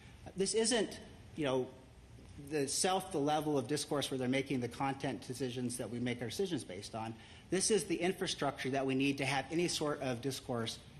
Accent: American